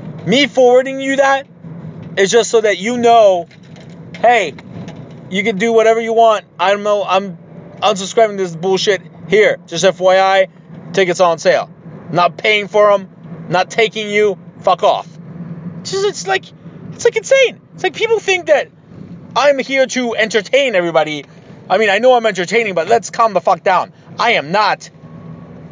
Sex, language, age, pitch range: male, English, 30-49, 175-220 Hz